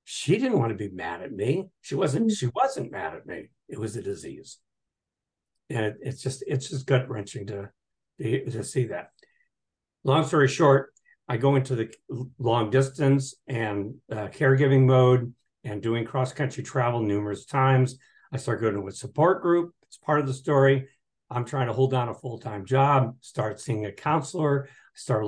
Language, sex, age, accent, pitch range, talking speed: English, male, 60-79, American, 115-135 Hz, 185 wpm